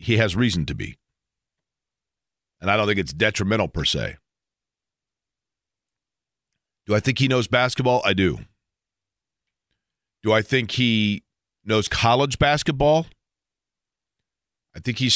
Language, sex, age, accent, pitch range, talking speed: English, male, 40-59, American, 100-125 Hz, 125 wpm